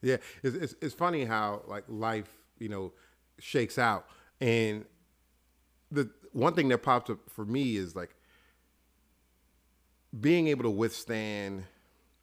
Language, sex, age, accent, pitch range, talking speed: English, male, 30-49, American, 90-115 Hz, 130 wpm